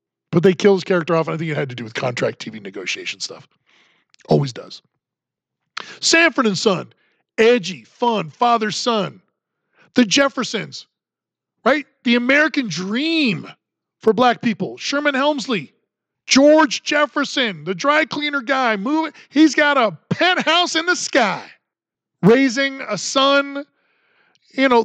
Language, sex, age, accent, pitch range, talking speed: English, male, 40-59, American, 190-280 Hz, 140 wpm